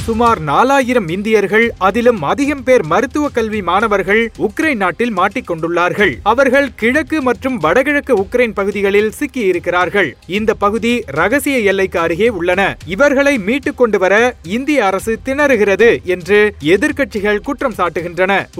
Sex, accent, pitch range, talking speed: male, native, 200-265 Hz, 115 wpm